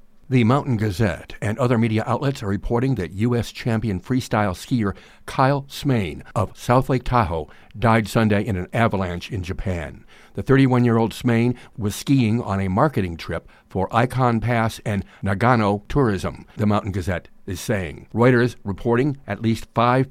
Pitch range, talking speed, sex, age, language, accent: 100-125 Hz, 155 wpm, male, 60-79, English, American